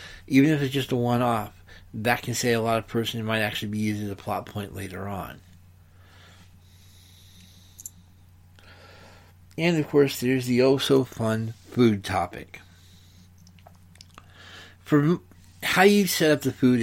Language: English